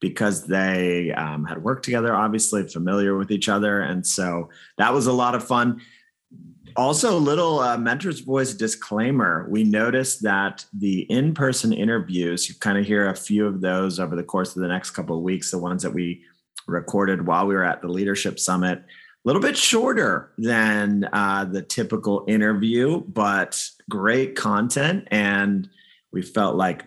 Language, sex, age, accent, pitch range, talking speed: English, male, 30-49, American, 90-115 Hz, 170 wpm